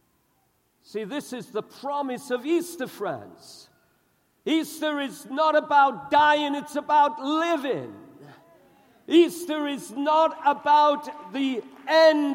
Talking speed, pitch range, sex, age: 105 wpm, 180-270 Hz, male, 50-69